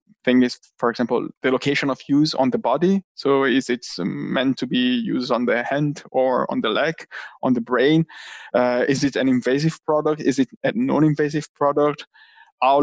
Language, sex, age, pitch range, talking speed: English, male, 20-39, 130-155 Hz, 185 wpm